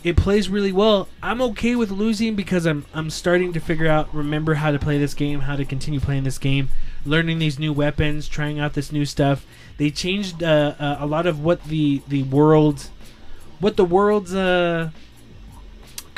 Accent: American